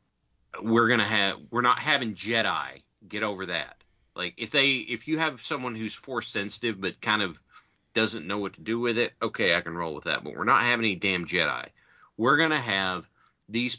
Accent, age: American, 40-59